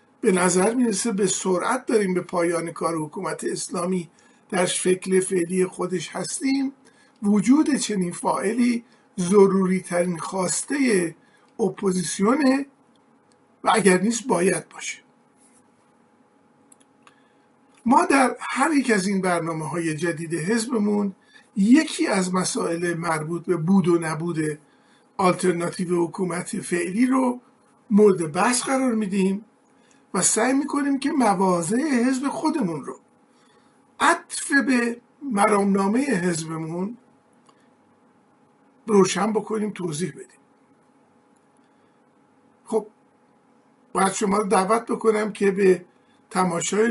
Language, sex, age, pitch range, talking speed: Persian, male, 50-69, 185-260 Hz, 100 wpm